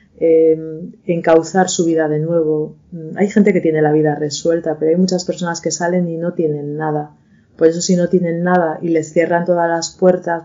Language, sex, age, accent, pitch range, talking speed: Spanish, female, 30-49, Spanish, 155-175 Hz, 195 wpm